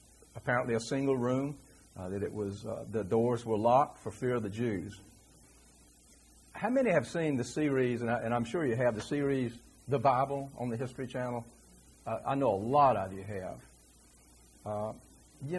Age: 60-79